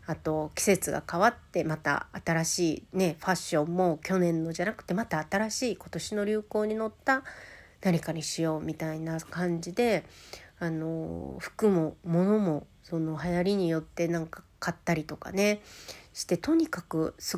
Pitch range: 160-190 Hz